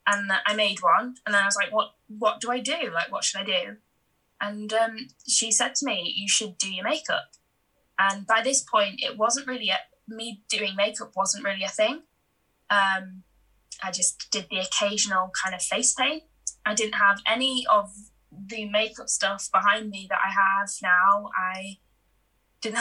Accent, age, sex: British, 10-29, female